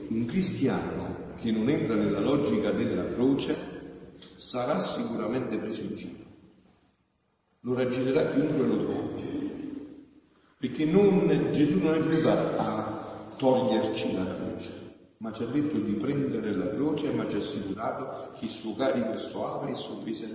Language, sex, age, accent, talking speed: Italian, male, 50-69, native, 145 wpm